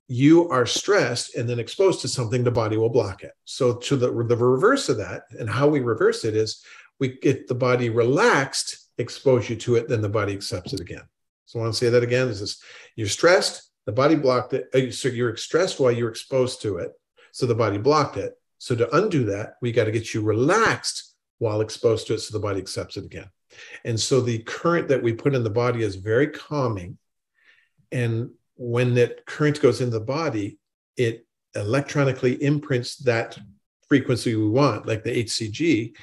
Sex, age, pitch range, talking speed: male, 50-69, 115-140 Hz, 200 wpm